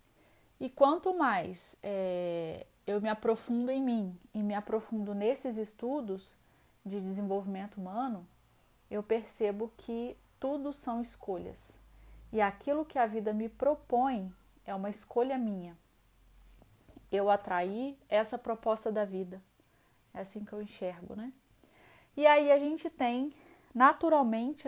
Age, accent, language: 20-39, Brazilian, Portuguese